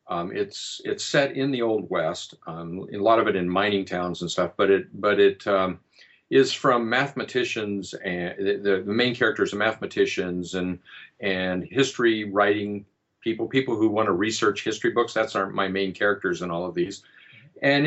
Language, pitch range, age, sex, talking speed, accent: English, 95-125 Hz, 50-69, male, 190 wpm, American